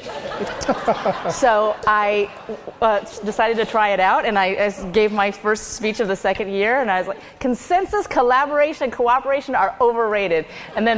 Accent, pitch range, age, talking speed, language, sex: American, 195-260 Hz, 30-49, 165 wpm, English, female